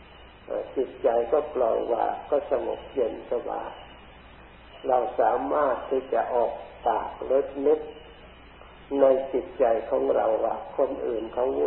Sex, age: male, 50-69